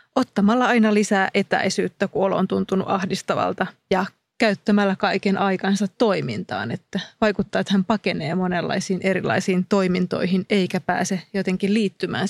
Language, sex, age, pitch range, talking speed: Finnish, female, 30-49, 190-205 Hz, 120 wpm